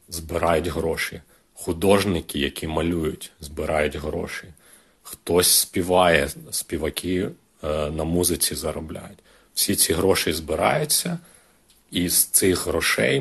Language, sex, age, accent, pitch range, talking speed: Ukrainian, male, 40-59, native, 80-90 Hz, 95 wpm